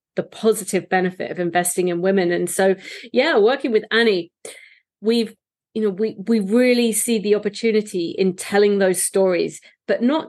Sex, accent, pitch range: female, British, 180-215 Hz